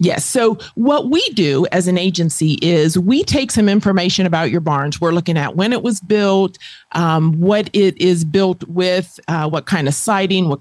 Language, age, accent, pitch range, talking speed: English, 40-59, American, 170-210 Hz, 200 wpm